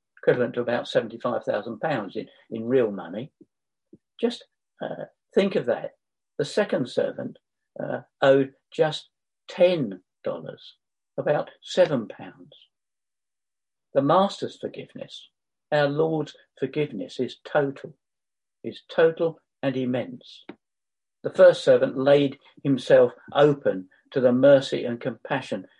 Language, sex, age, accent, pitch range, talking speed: English, male, 50-69, British, 135-180 Hz, 105 wpm